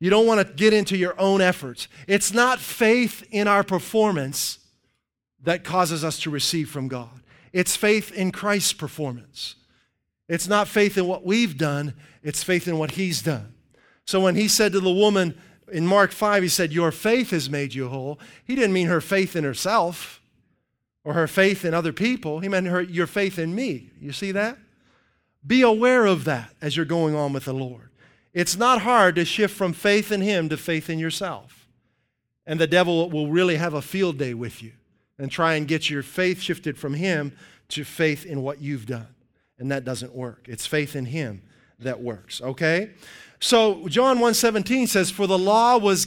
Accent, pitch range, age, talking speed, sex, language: American, 150-205 Hz, 40-59, 195 wpm, male, English